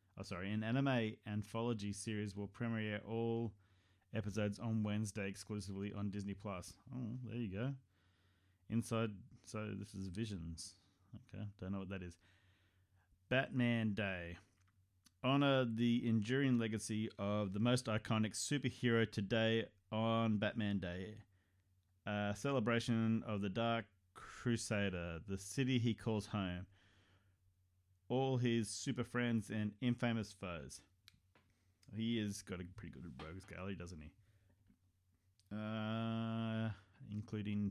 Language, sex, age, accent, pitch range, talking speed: English, male, 30-49, Australian, 95-115 Hz, 120 wpm